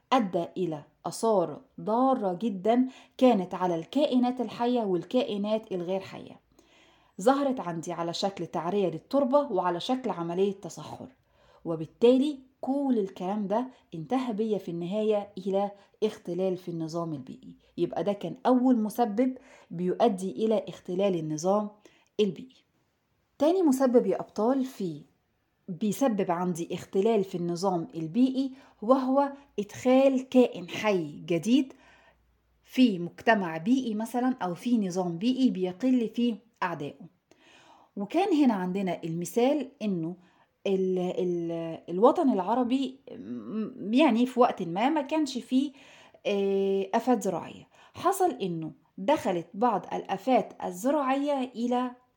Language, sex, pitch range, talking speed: Arabic, female, 180-255 Hz, 110 wpm